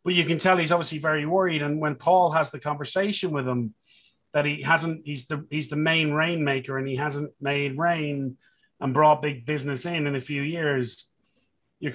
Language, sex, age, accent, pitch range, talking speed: English, male, 30-49, British, 140-165 Hz, 200 wpm